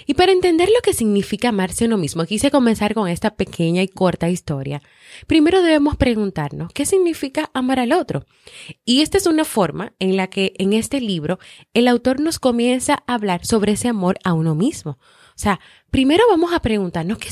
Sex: female